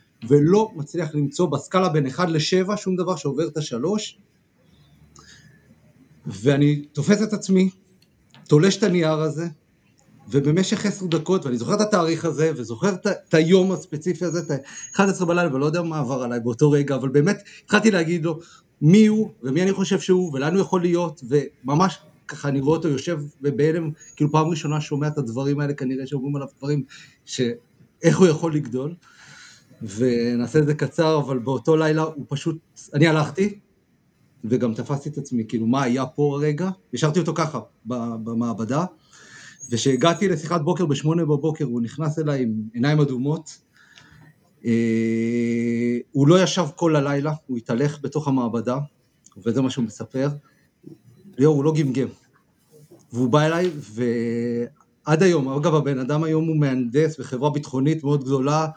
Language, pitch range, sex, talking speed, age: Hebrew, 130-170 Hz, male, 150 wpm, 40-59